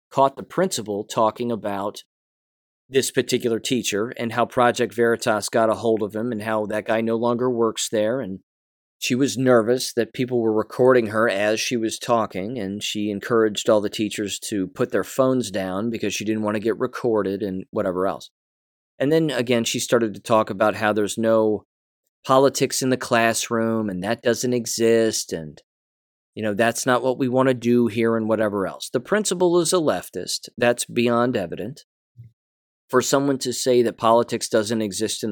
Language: English